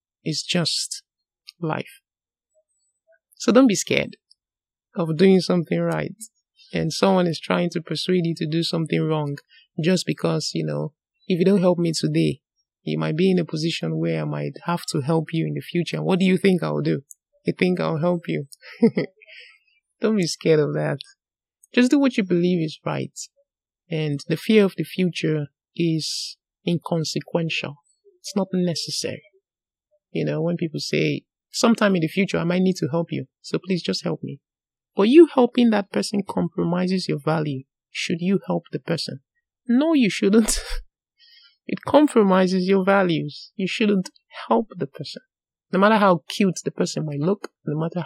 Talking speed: 170 wpm